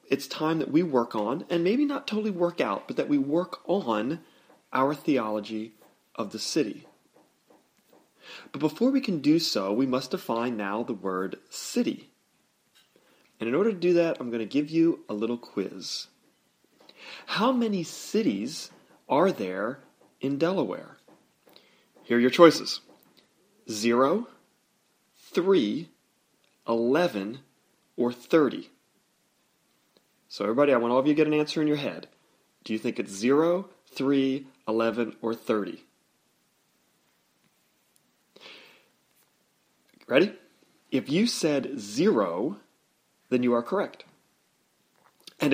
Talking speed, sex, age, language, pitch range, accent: 130 wpm, male, 30-49, English, 120-170 Hz, American